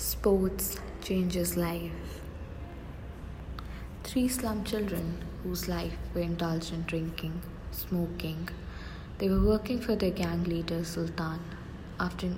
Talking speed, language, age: 105 wpm, English, 20-39